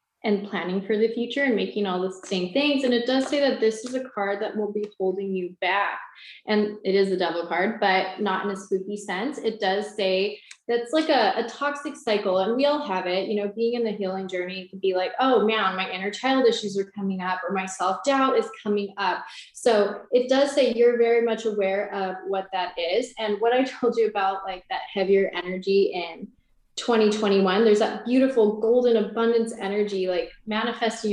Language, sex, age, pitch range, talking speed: English, female, 20-39, 195-235 Hz, 210 wpm